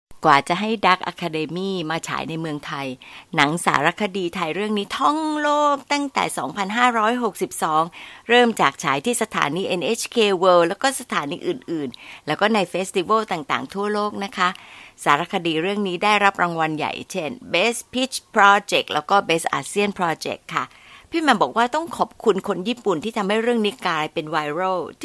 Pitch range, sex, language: 170-235 Hz, female, Thai